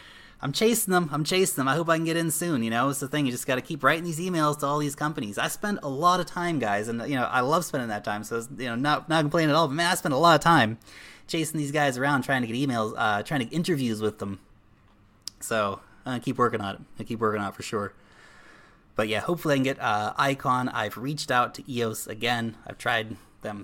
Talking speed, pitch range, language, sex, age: 275 wpm, 110-150 Hz, English, male, 20-39